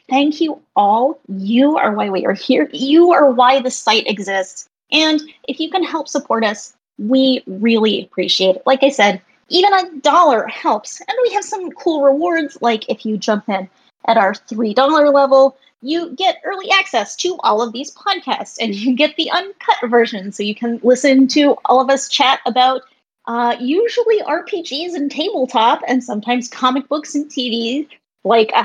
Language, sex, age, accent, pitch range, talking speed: English, female, 30-49, American, 230-310 Hz, 180 wpm